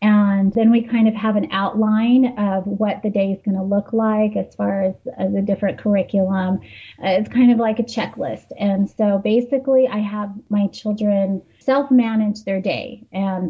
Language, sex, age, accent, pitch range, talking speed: English, female, 30-49, American, 210-250 Hz, 185 wpm